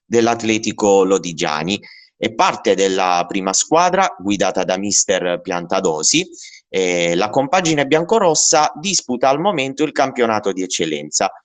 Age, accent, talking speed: 30-49, native, 115 wpm